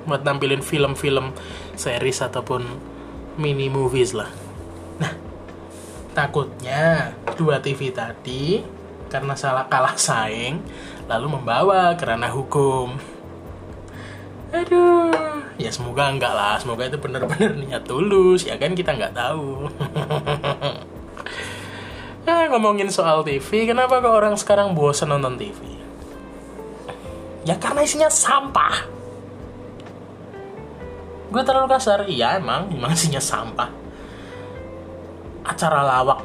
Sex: male